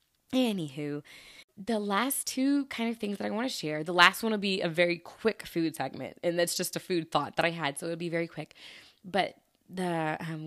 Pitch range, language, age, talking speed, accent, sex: 175-240 Hz, English, 20-39, 225 wpm, American, female